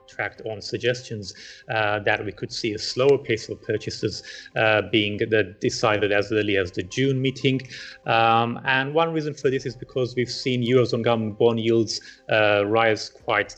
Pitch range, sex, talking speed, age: 110-130 Hz, male, 170 wpm, 30-49